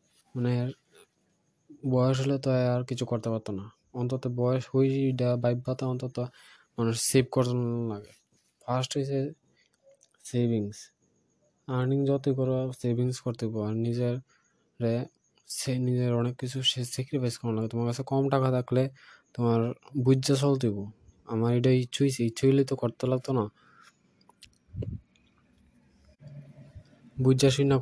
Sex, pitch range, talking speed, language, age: male, 115-135 Hz, 95 wpm, Bengali, 20-39